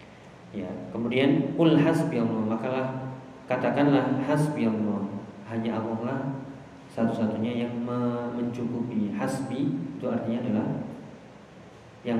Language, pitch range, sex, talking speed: Indonesian, 110-130 Hz, male, 85 wpm